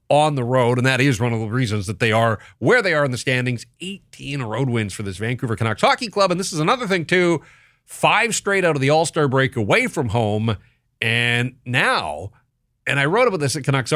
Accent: American